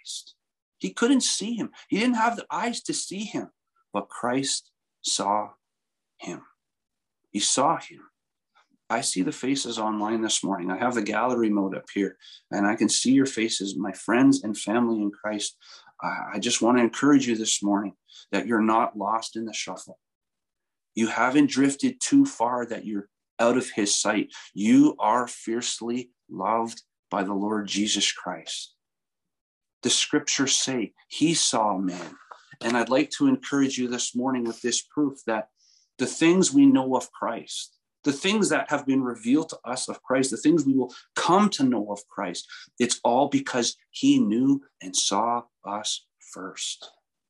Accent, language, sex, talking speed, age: American, English, male, 165 wpm, 40-59